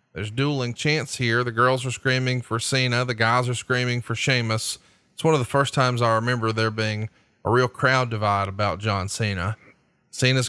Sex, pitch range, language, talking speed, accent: male, 110-130 Hz, English, 195 wpm, American